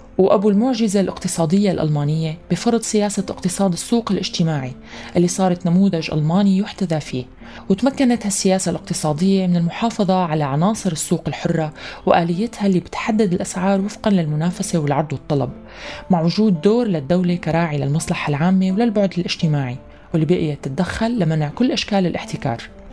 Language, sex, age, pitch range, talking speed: Arabic, female, 20-39, 160-205 Hz, 125 wpm